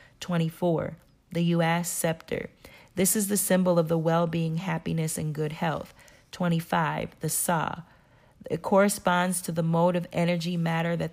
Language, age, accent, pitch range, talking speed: English, 40-59, American, 165-180 Hz, 145 wpm